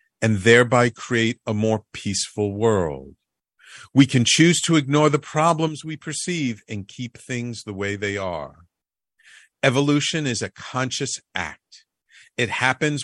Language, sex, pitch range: English, male, 100-140 Hz